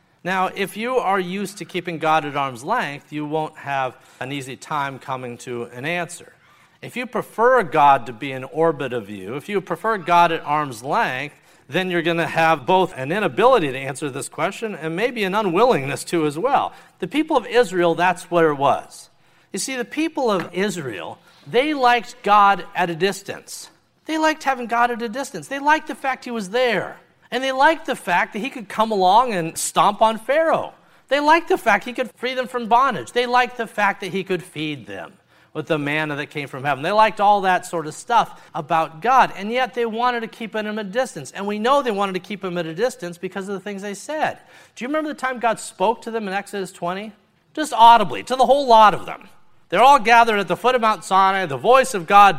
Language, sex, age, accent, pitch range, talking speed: English, male, 50-69, American, 165-235 Hz, 230 wpm